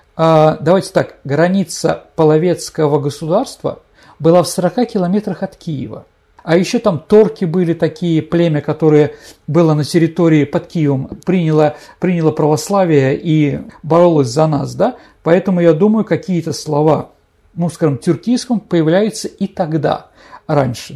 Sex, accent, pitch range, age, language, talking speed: male, native, 155-195 Hz, 50-69, Russian, 125 wpm